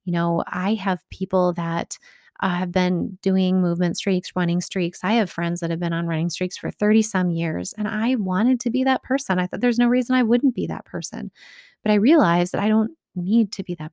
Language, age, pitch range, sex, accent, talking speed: English, 30-49, 175-200 Hz, female, American, 235 wpm